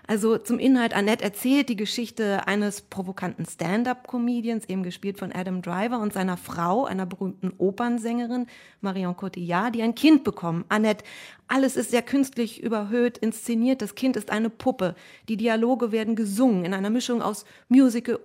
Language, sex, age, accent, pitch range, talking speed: German, female, 30-49, German, 200-240 Hz, 160 wpm